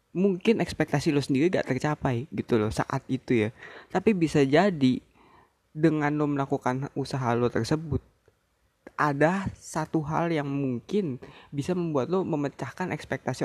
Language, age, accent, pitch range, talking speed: Indonesian, 20-39, native, 125-160 Hz, 135 wpm